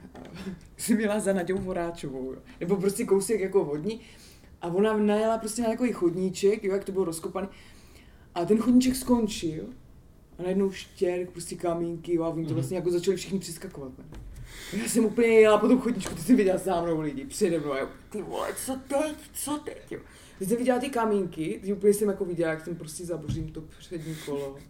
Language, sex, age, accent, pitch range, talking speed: Czech, female, 20-39, native, 165-200 Hz, 205 wpm